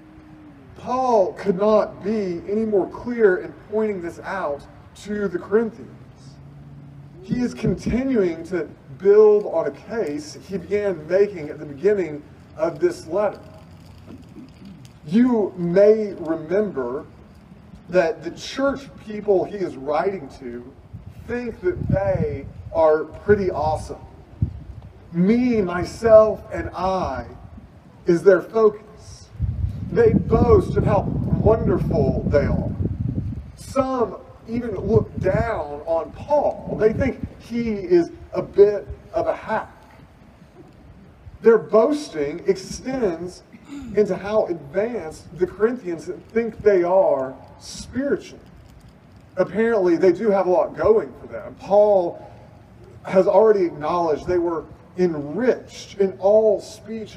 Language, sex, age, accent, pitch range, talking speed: English, male, 40-59, American, 160-215 Hz, 115 wpm